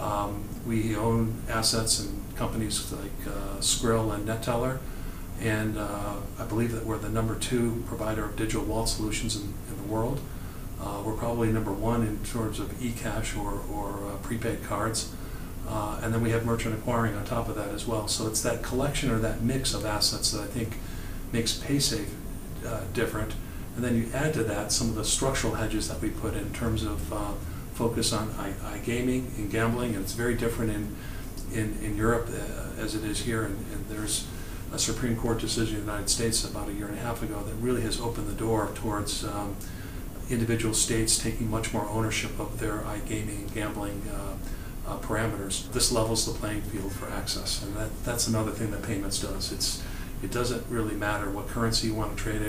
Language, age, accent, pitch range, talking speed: English, 40-59, American, 105-115 Hz, 205 wpm